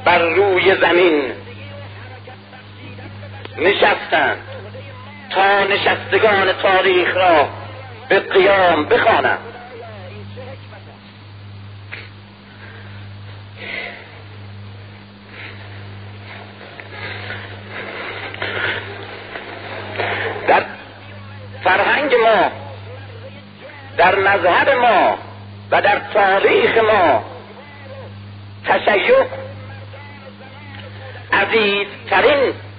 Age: 50-69